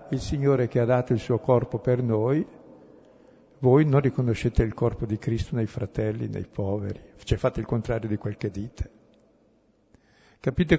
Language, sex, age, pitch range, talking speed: Italian, male, 60-79, 110-135 Hz, 165 wpm